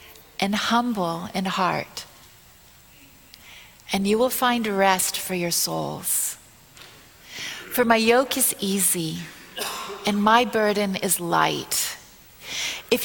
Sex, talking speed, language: female, 105 wpm, English